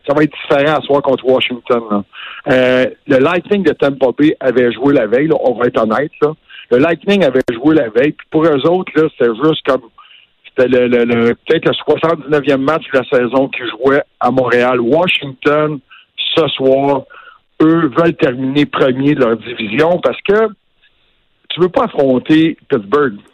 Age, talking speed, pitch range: 60-79, 185 wpm, 130-165 Hz